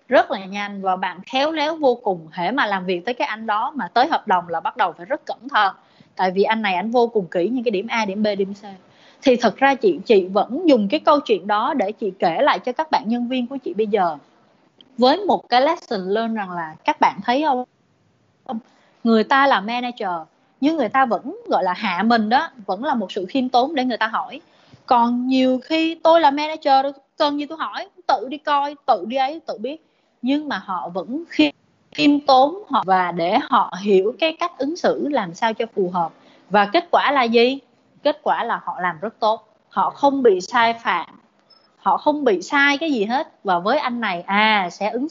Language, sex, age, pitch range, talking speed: Vietnamese, female, 20-39, 205-280 Hz, 230 wpm